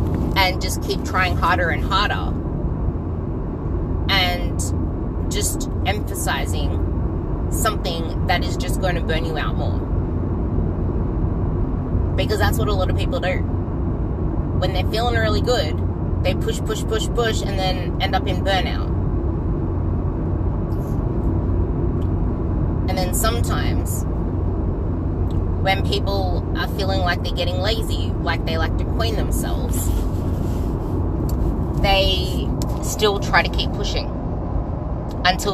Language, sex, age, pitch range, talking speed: English, female, 20-39, 80-90 Hz, 115 wpm